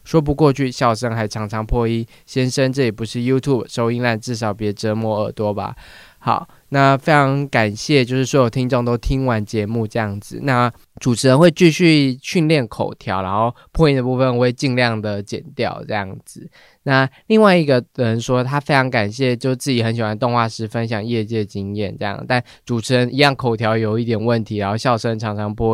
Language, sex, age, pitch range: Chinese, male, 20-39, 110-130 Hz